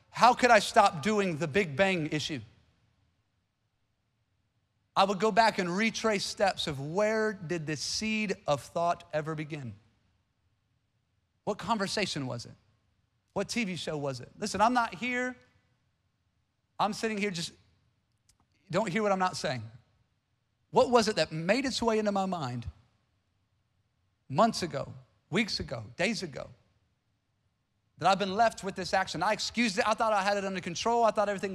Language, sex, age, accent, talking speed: English, male, 40-59, American, 160 wpm